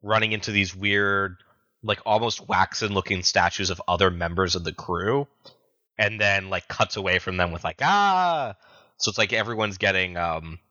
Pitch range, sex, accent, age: 95-120 Hz, male, American, 20-39